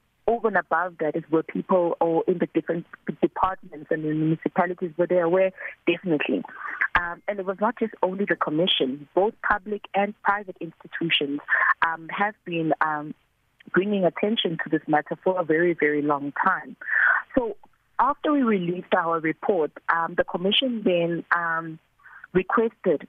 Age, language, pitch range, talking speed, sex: 30-49, English, 160-200 Hz, 155 wpm, female